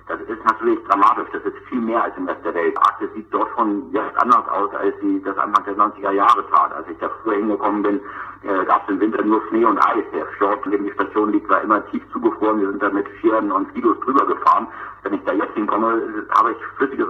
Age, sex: 60-79, male